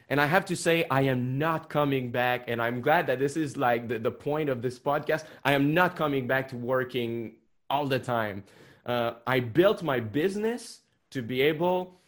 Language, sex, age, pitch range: Japanese, male, 20-39, 120-155 Hz